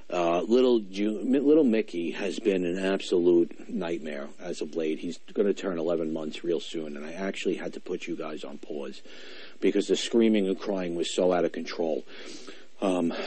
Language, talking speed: English, 185 wpm